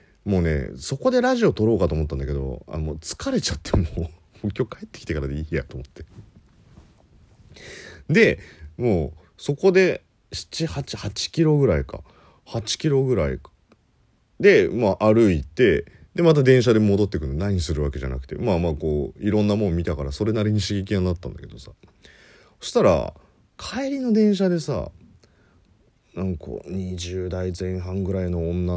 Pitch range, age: 75-110 Hz, 40-59